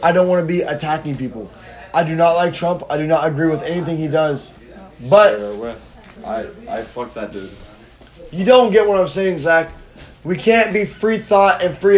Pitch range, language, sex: 120-170 Hz, English, male